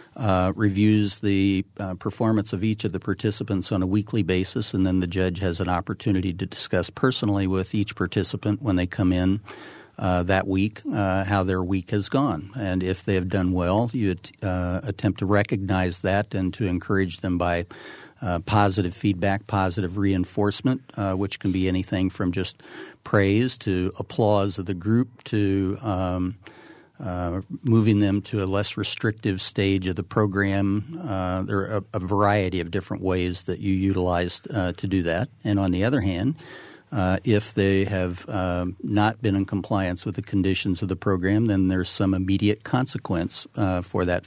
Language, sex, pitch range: English, male, 95-105 Hz